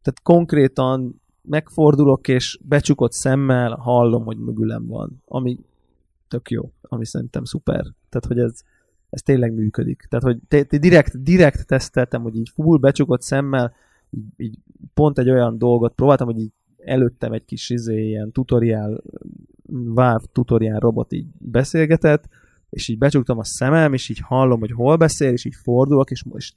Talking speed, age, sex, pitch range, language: 160 wpm, 20-39, male, 115-140 Hz, Hungarian